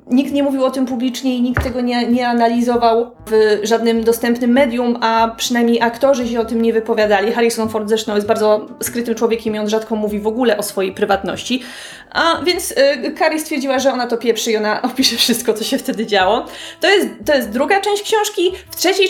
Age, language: 20-39, Polish